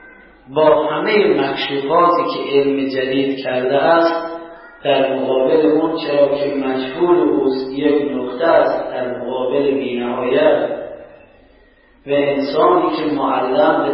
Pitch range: 130-150 Hz